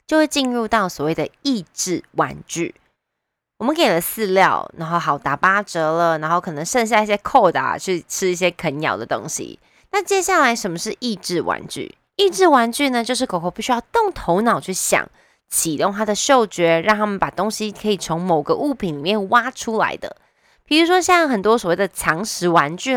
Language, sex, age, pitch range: Chinese, female, 20-39, 170-250 Hz